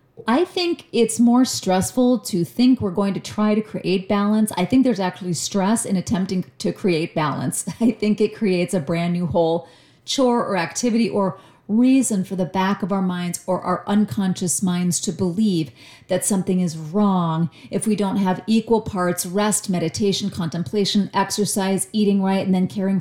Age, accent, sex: 30-49, American, female